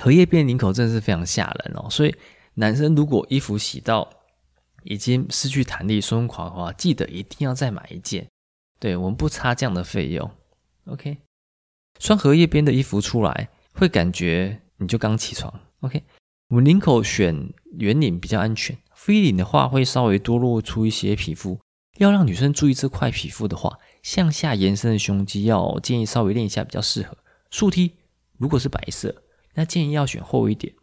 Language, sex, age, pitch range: Chinese, male, 20-39, 95-145 Hz